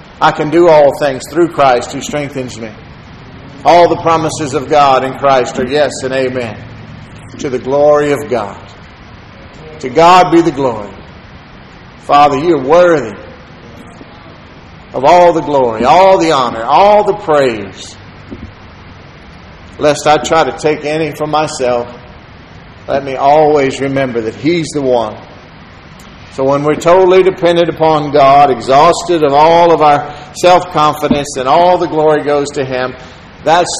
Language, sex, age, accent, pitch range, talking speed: English, male, 50-69, American, 120-155 Hz, 145 wpm